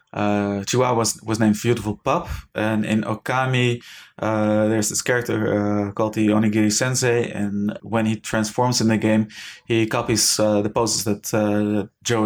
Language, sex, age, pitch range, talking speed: English, male, 20-39, 110-125 Hz, 170 wpm